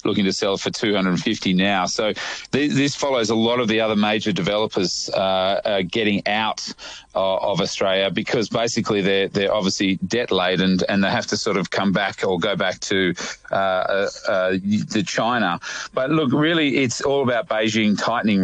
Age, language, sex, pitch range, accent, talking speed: 30-49, English, male, 95-110 Hz, Australian, 190 wpm